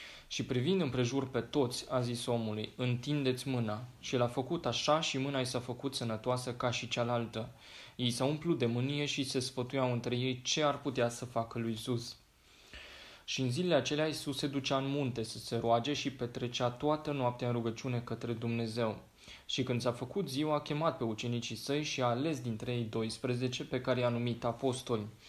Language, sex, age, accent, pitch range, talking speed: Romanian, male, 20-39, native, 120-135 Hz, 195 wpm